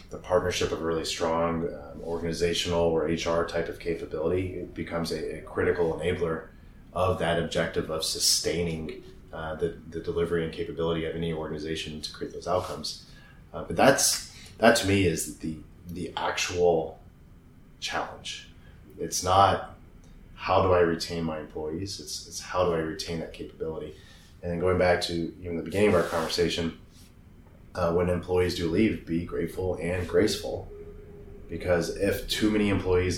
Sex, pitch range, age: male, 80-90 Hz, 30-49